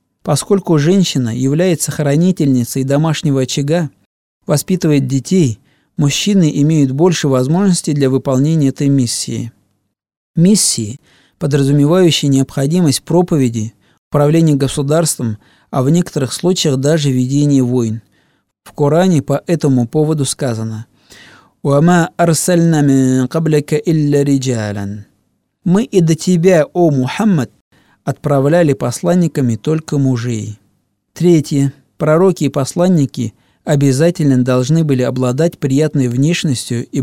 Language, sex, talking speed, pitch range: Russian, male, 100 wpm, 125-160 Hz